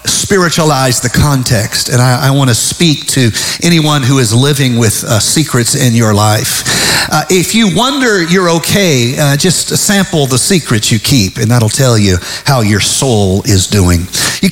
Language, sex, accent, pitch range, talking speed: English, male, American, 120-155 Hz, 180 wpm